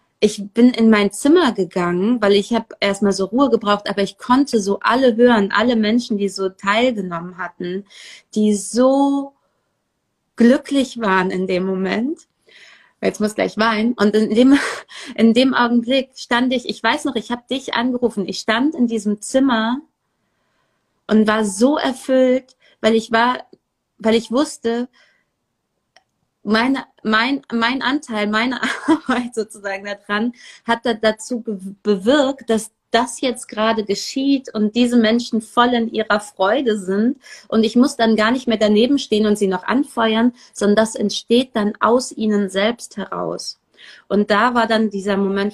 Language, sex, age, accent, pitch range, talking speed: German, female, 30-49, German, 210-250 Hz, 155 wpm